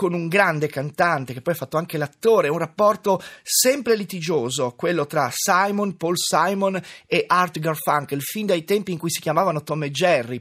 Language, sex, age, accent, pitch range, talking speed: Italian, male, 30-49, native, 155-200 Hz, 185 wpm